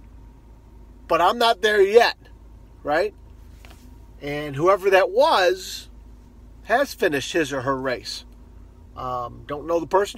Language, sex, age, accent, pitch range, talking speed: English, male, 40-59, American, 120-170 Hz, 125 wpm